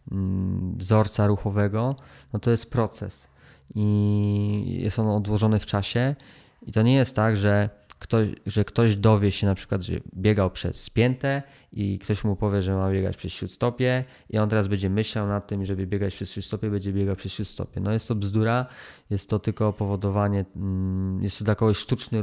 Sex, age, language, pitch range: male, 20-39, Polish, 100-110 Hz